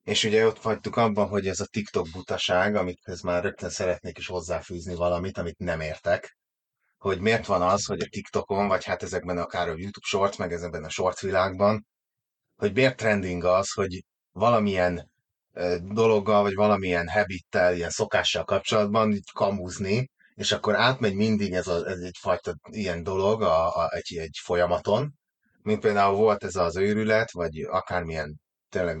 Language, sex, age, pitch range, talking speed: Hungarian, male, 30-49, 90-110 Hz, 165 wpm